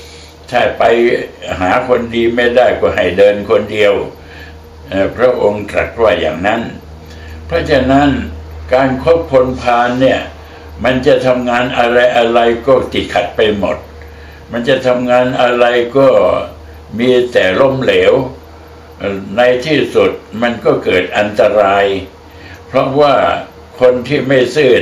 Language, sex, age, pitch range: Thai, male, 60-79, 95-130 Hz